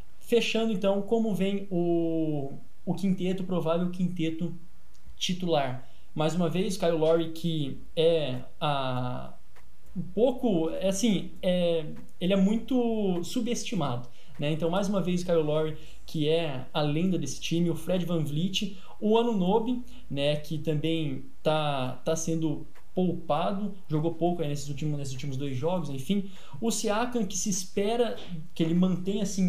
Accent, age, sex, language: Brazilian, 20-39, male, Portuguese